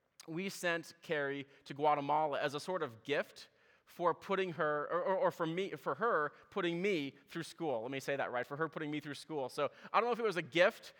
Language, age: English, 20-39